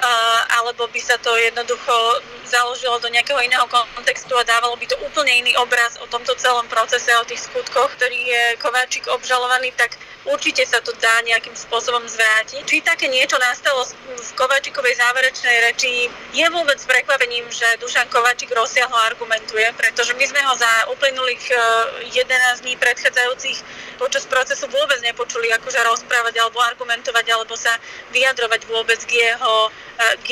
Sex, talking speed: female, 150 wpm